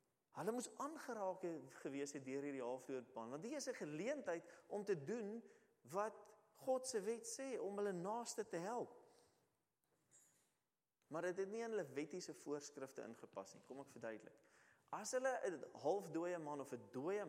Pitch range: 145-215 Hz